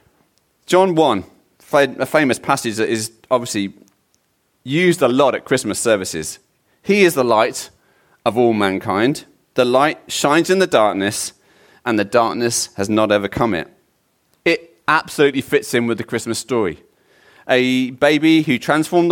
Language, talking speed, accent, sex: English, 145 wpm, British, male